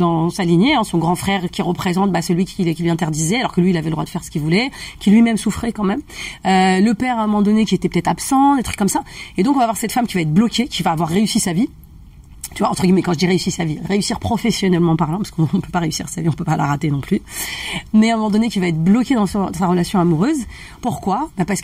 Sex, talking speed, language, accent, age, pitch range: female, 300 wpm, French, French, 30-49, 170-225 Hz